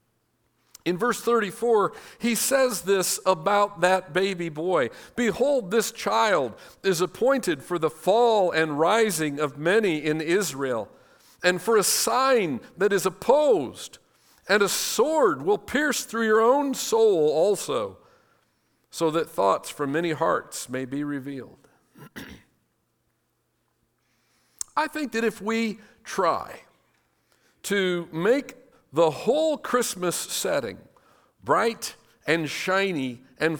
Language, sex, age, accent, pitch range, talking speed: English, male, 50-69, American, 150-235 Hz, 120 wpm